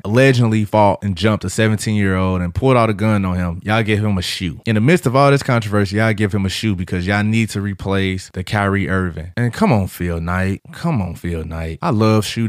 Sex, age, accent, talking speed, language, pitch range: male, 20-39, American, 240 wpm, English, 95-130 Hz